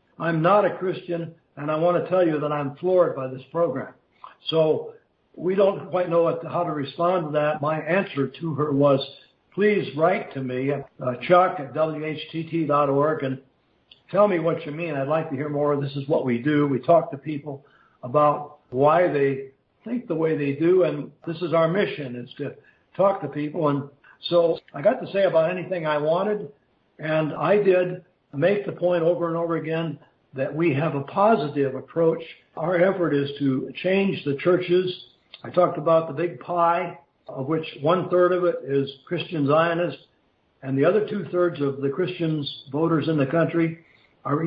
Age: 60-79